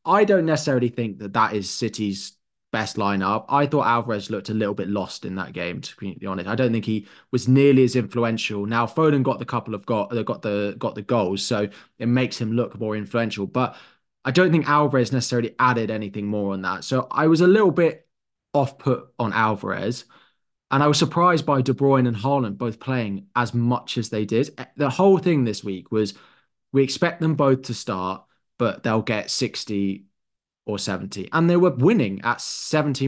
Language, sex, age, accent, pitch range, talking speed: English, male, 20-39, British, 105-135 Hz, 205 wpm